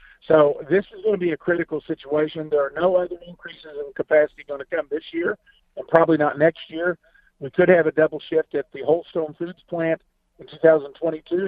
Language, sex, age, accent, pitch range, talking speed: English, male, 50-69, American, 145-190 Hz, 205 wpm